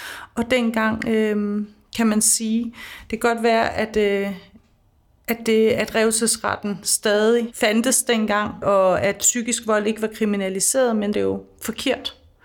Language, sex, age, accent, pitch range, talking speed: Danish, female, 30-49, native, 220-245 Hz, 150 wpm